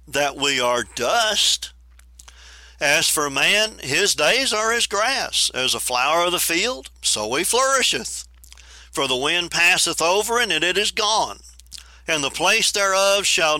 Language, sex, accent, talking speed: English, male, American, 155 wpm